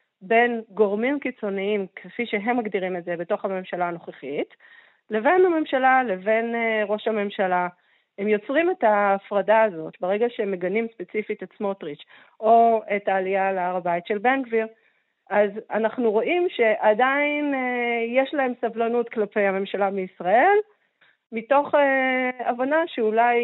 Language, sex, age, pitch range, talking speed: Hebrew, female, 40-59, 195-240 Hz, 125 wpm